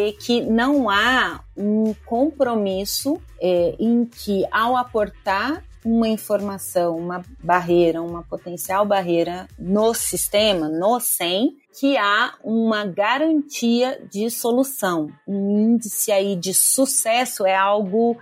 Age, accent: 30-49, Brazilian